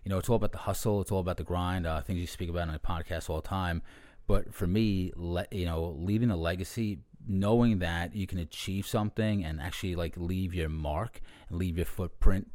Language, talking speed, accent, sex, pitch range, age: English, 230 wpm, American, male, 85-105 Hz, 30-49